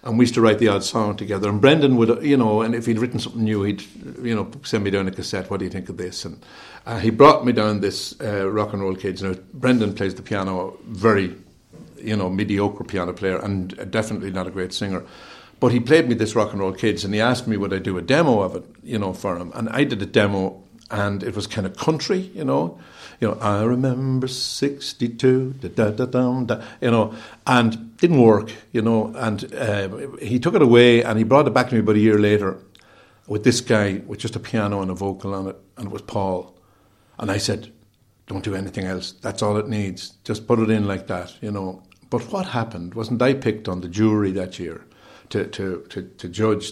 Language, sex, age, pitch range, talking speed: English, male, 60-79, 95-115 Hz, 240 wpm